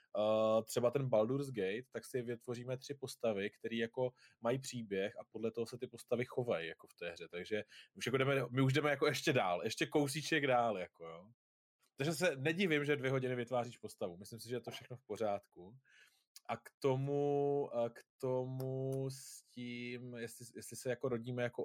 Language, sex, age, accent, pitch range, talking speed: Czech, male, 20-39, native, 110-130 Hz, 190 wpm